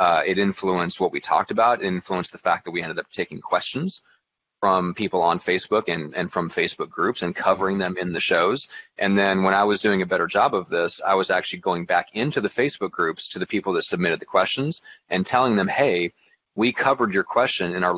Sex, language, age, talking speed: male, English, 30-49, 225 wpm